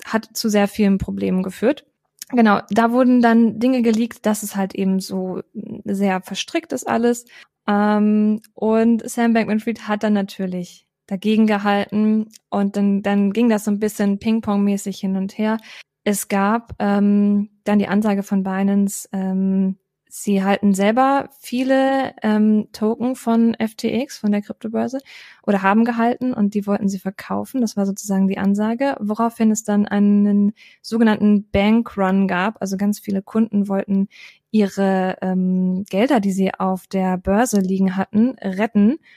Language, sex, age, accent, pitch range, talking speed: German, female, 20-39, German, 195-230 Hz, 150 wpm